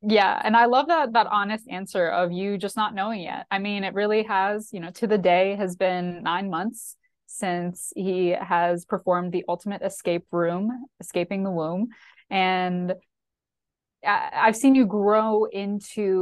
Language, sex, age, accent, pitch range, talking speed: English, female, 20-39, American, 180-215 Hz, 165 wpm